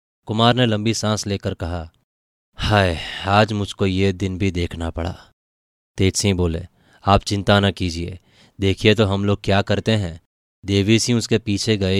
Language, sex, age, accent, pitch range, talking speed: Hindi, male, 20-39, native, 95-110 Hz, 155 wpm